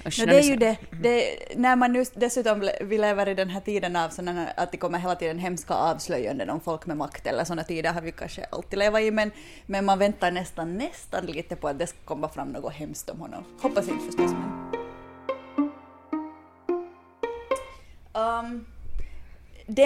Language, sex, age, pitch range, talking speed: English, female, 30-49, 180-255 Hz, 185 wpm